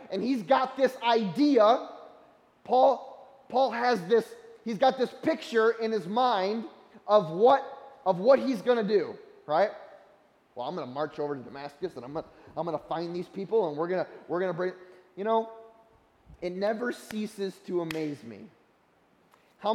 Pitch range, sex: 200-255 Hz, male